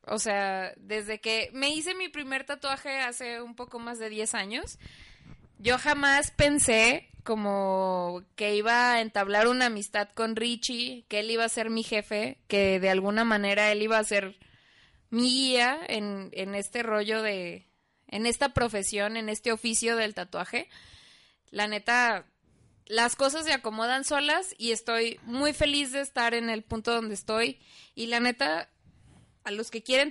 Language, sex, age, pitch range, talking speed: Spanish, female, 20-39, 210-255 Hz, 165 wpm